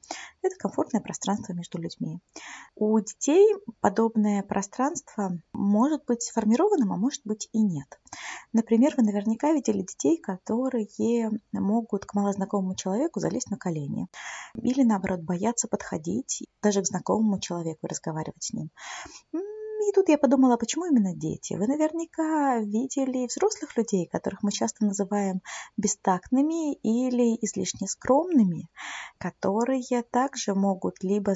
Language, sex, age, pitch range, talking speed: Russian, female, 20-39, 195-255 Hz, 125 wpm